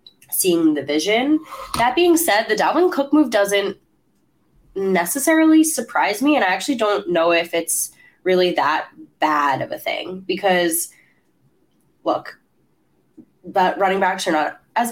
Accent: American